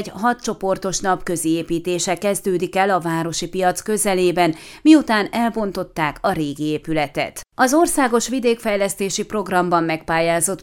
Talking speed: 125 wpm